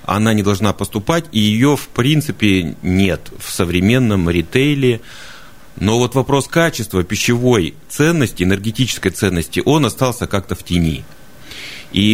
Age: 30-49